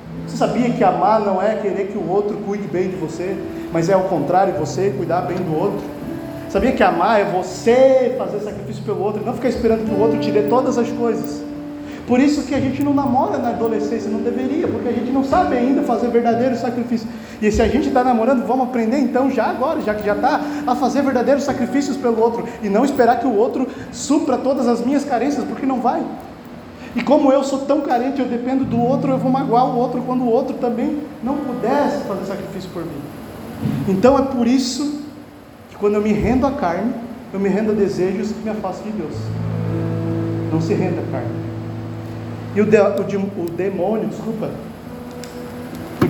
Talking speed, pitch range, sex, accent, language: 205 wpm, 195-260 Hz, male, Brazilian, Portuguese